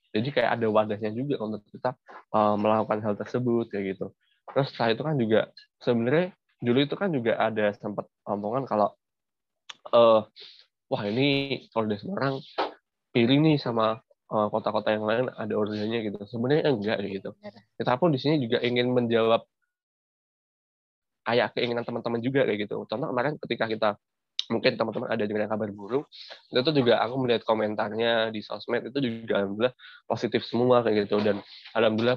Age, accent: 20-39, native